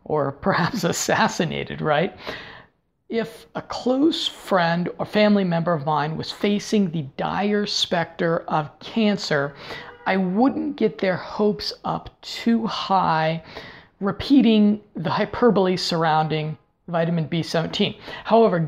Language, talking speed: English, 110 wpm